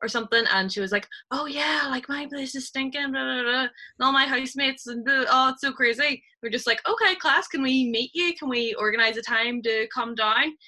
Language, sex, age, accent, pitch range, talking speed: English, female, 10-29, Irish, 215-290 Hz, 235 wpm